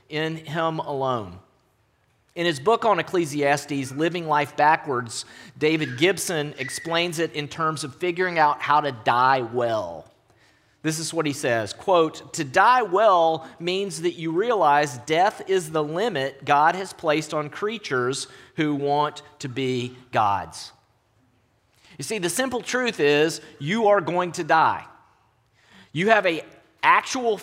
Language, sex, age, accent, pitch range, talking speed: English, male, 40-59, American, 130-170 Hz, 145 wpm